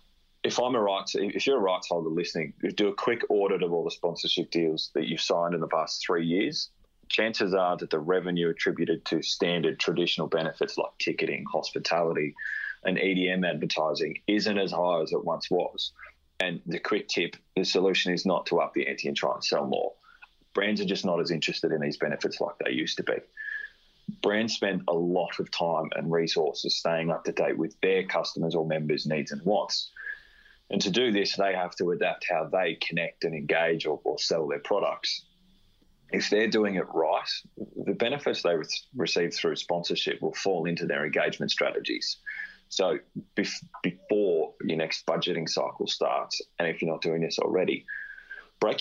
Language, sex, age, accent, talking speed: English, male, 20-39, Australian, 185 wpm